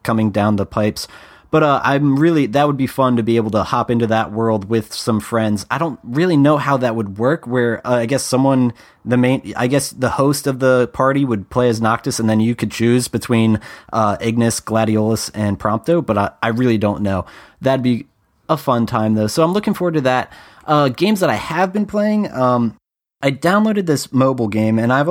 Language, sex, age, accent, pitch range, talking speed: English, male, 20-39, American, 115-140 Hz, 220 wpm